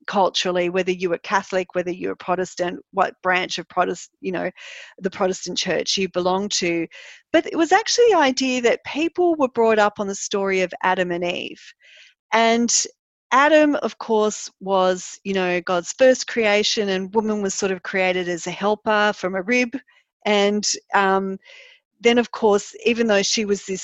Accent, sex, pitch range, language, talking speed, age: Australian, female, 185-260 Hz, English, 180 wpm, 40-59